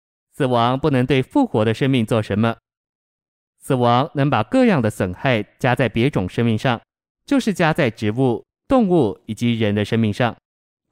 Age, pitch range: 20-39, 115-145 Hz